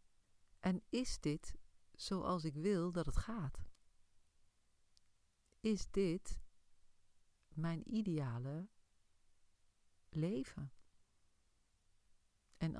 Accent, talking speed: Dutch, 70 wpm